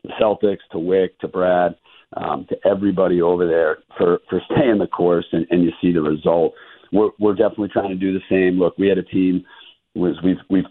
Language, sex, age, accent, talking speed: English, male, 50-69, American, 215 wpm